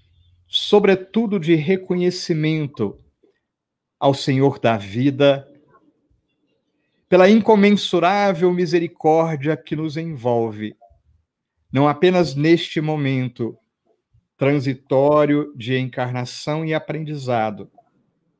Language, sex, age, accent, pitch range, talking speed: Portuguese, male, 50-69, Brazilian, 120-160 Hz, 70 wpm